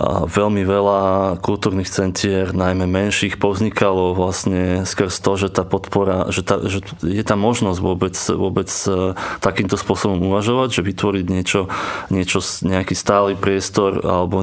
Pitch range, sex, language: 95-100 Hz, male, Slovak